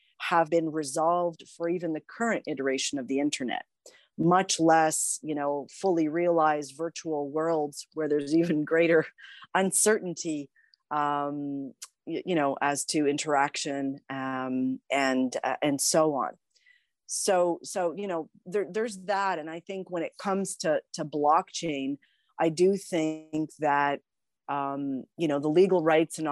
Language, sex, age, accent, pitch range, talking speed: English, female, 40-59, American, 140-170 Hz, 145 wpm